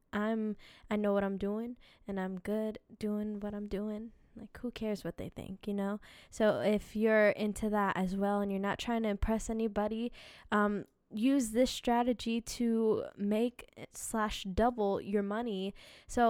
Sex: female